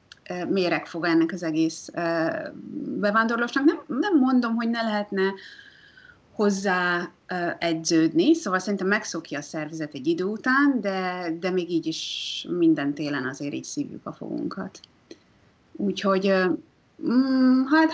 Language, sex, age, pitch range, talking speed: Hungarian, female, 30-49, 170-215 Hz, 115 wpm